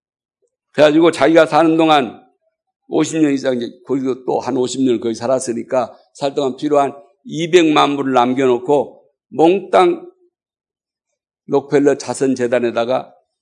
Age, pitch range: 50-69, 135-185 Hz